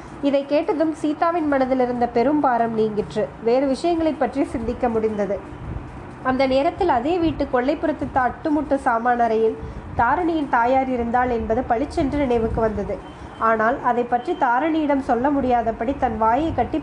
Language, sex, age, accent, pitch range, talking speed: Tamil, female, 20-39, native, 240-295 Hz, 130 wpm